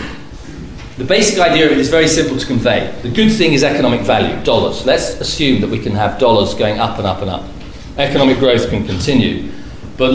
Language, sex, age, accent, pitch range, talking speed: English, male, 40-59, British, 100-130 Hz, 205 wpm